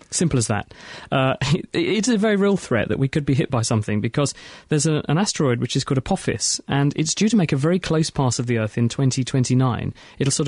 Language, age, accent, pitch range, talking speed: English, 30-49, British, 125-160 Hz, 230 wpm